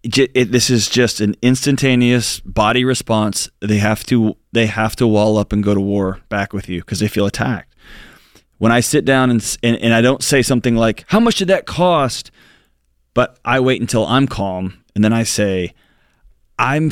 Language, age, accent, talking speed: English, 30-49, American, 190 wpm